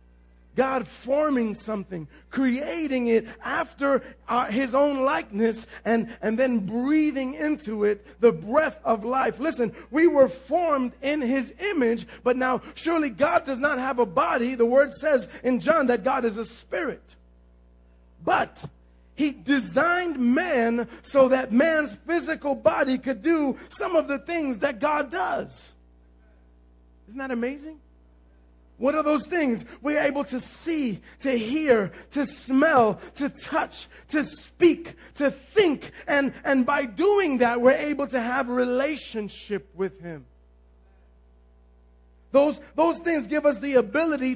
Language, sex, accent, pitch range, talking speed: English, male, American, 210-290 Hz, 140 wpm